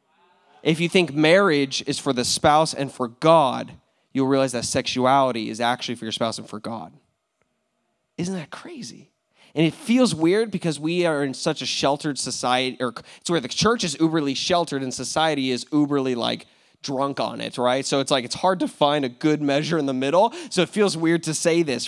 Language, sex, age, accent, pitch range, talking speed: English, male, 20-39, American, 140-190 Hz, 205 wpm